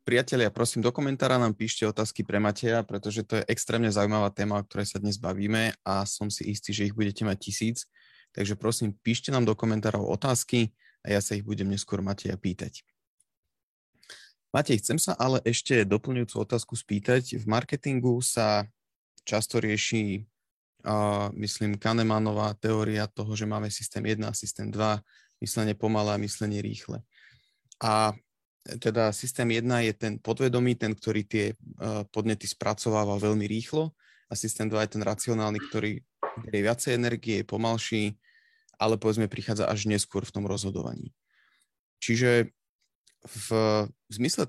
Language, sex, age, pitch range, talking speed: Slovak, male, 20-39, 105-120 Hz, 150 wpm